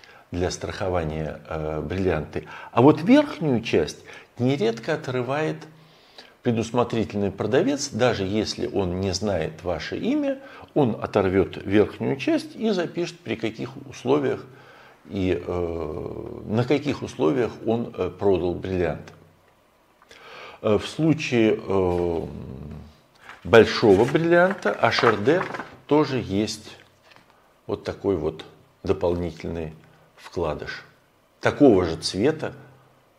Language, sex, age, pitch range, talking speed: Russian, male, 50-69, 90-140 Hz, 90 wpm